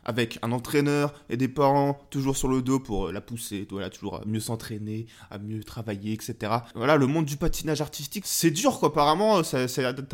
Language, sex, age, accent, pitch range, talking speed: French, male, 20-39, French, 120-155 Hz, 215 wpm